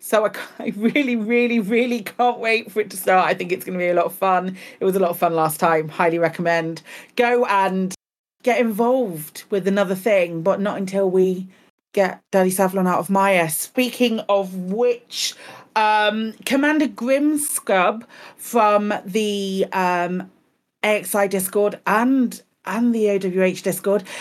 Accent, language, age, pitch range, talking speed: British, English, 40-59, 200-275 Hz, 160 wpm